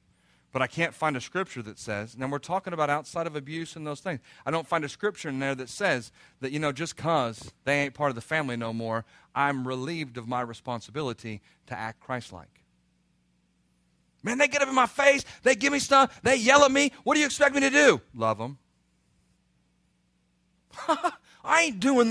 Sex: male